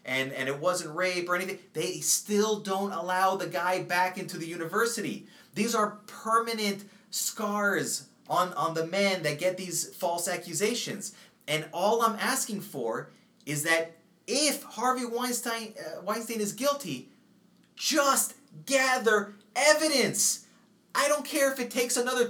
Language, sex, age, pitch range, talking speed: English, male, 30-49, 175-230 Hz, 145 wpm